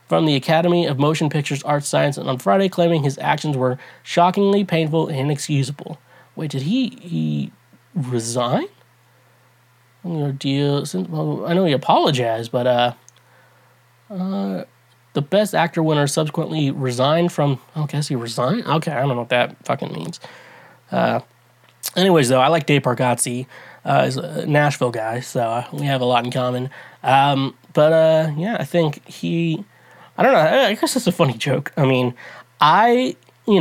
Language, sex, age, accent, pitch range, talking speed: English, male, 20-39, American, 125-165 Hz, 165 wpm